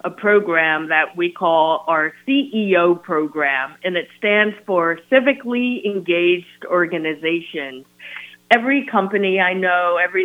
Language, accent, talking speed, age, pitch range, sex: English, American, 115 wpm, 50-69, 170-210 Hz, female